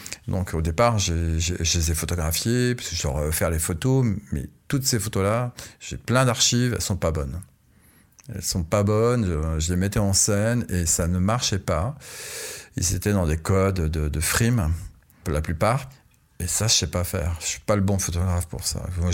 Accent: French